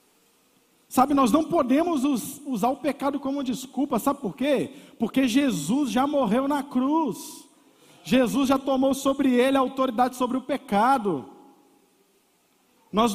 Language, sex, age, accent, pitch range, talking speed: Portuguese, male, 50-69, Brazilian, 250-290 Hz, 130 wpm